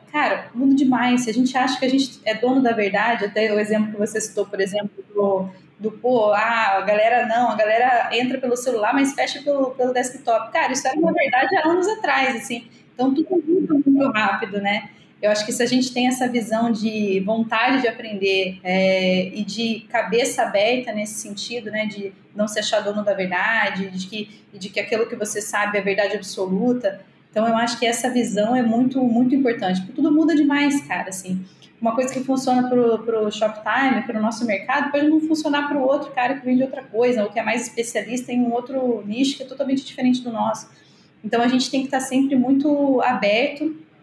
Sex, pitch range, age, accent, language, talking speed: female, 210-265 Hz, 20-39, Brazilian, Portuguese, 215 wpm